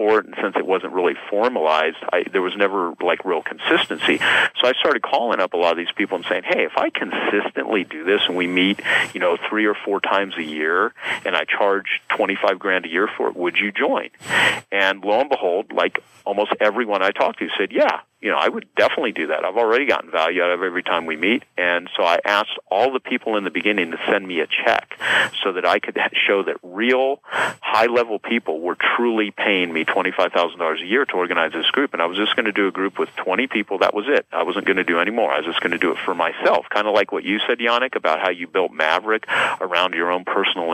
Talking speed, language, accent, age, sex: 245 wpm, English, American, 40-59, male